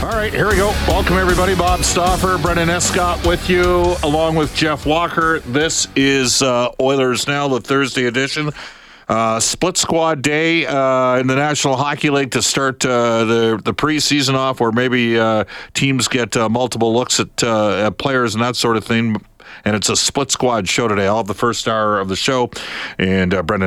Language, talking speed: English, 195 wpm